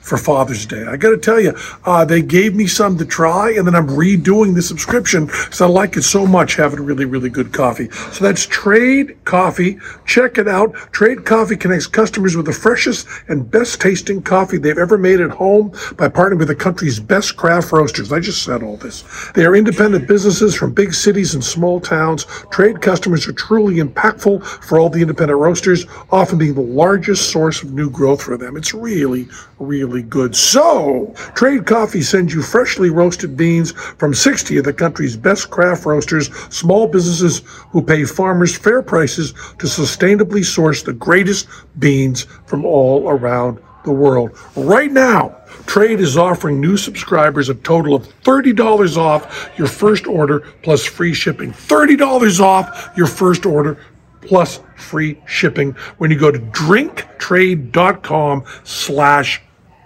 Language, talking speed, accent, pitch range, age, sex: English, 165 wpm, American, 150-200 Hz, 50-69, male